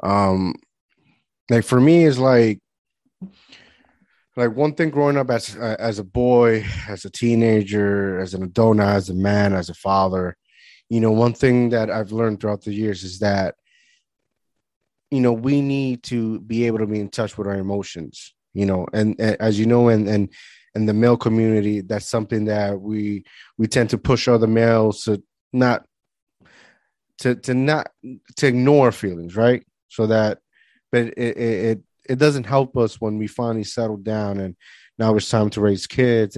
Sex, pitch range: male, 105-120 Hz